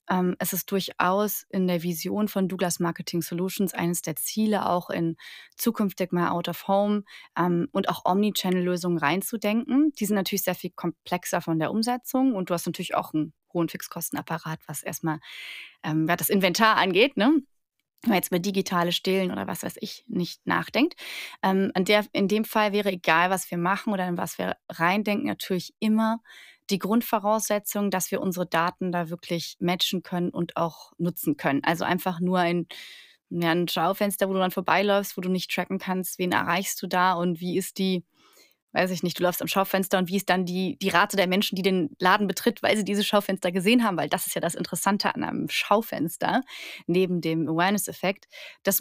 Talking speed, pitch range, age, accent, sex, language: 195 wpm, 175-205 Hz, 30-49, German, female, German